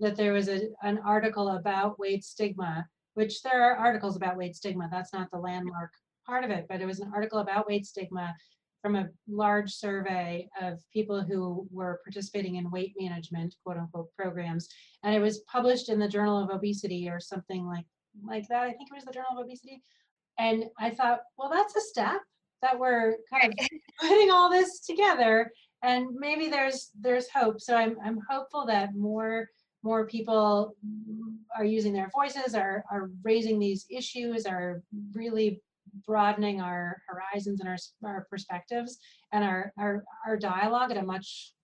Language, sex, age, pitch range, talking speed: English, female, 30-49, 190-230 Hz, 175 wpm